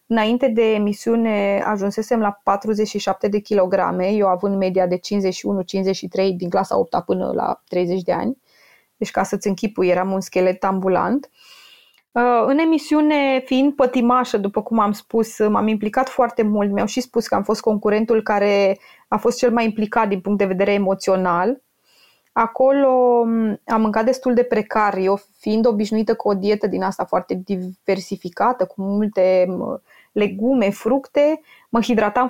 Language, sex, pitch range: Romanian, female, 195-245 Hz